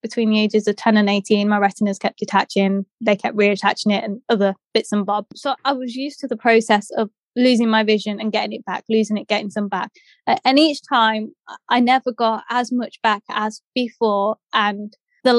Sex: female